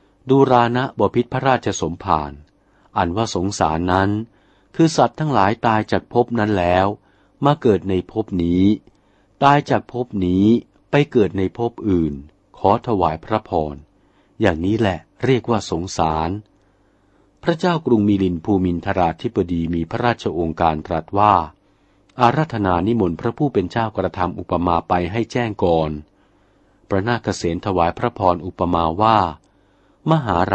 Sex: male